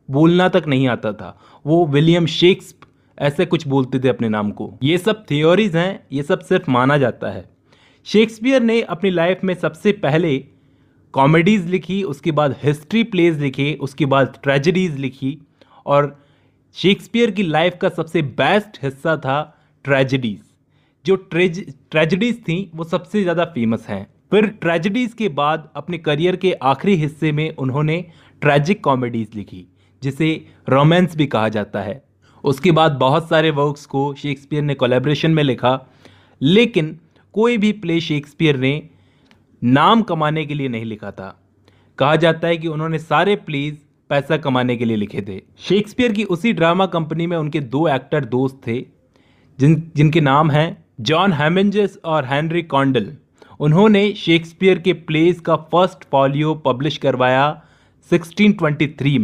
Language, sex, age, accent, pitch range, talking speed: Hindi, male, 30-49, native, 135-175 Hz, 155 wpm